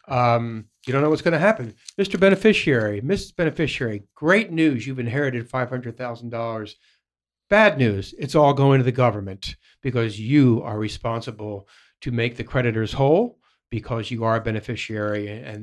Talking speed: 155 wpm